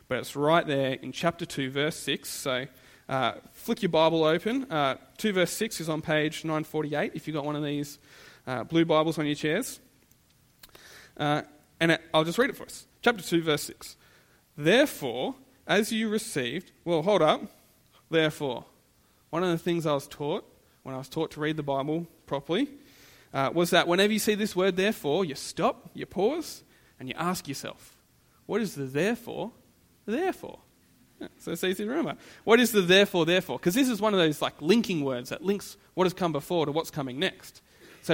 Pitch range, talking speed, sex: 145-190 Hz, 195 wpm, male